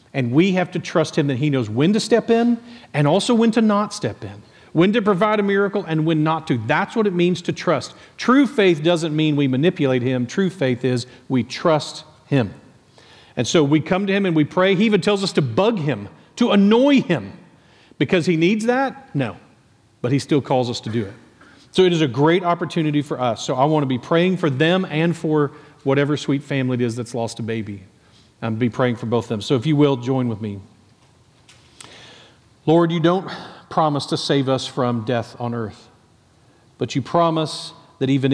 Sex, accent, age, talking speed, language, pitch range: male, American, 40-59, 215 wpm, English, 120-160 Hz